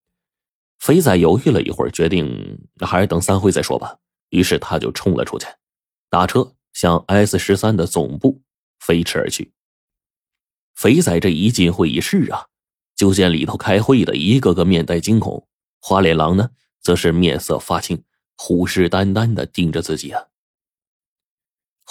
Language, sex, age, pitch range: Chinese, male, 30-49, 90-135 Hz